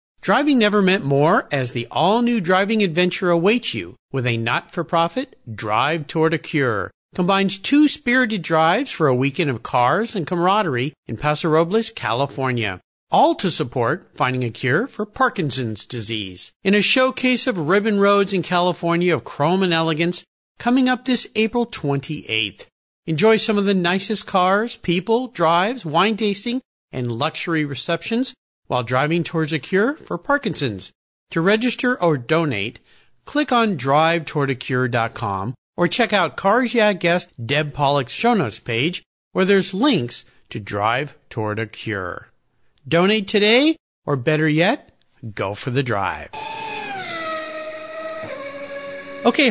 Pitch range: 135-220 Hz